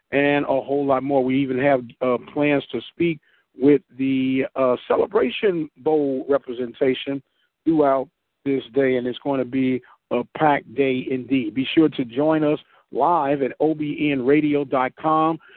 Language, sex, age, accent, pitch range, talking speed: English, male, 50-69, American, 135-160 Hz, 145 wpm